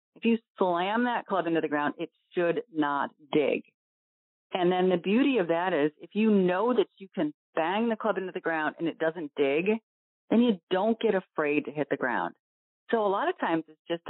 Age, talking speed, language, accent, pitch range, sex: 40-59, 215 wpm, English, American, 160-220 Hz, female